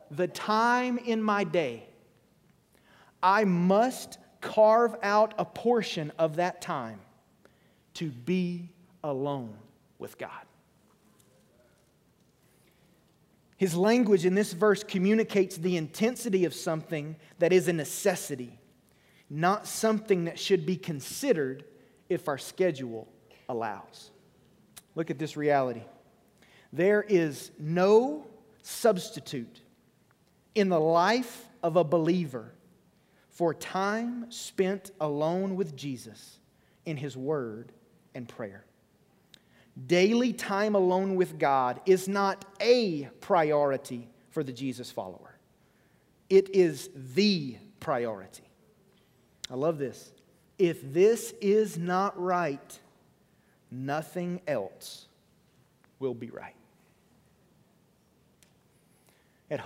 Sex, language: male, English